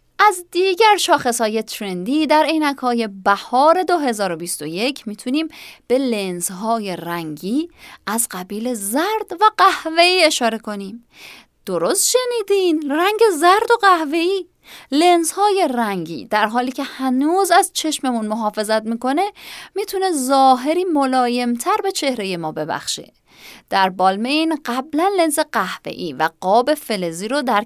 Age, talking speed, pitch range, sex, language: 30-49, 115 wpm, 205-325 Hz, female, Persian